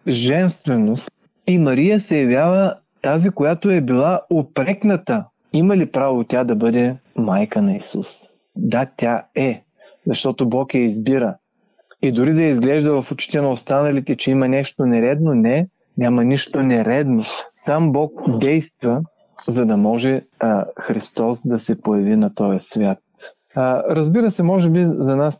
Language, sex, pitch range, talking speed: Bulgarian, male, 120-160 Hz, 150 wpm